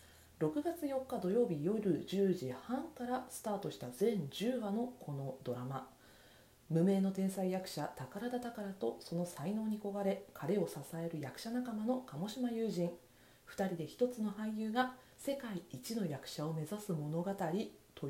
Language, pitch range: Japanese, 150-225 Hz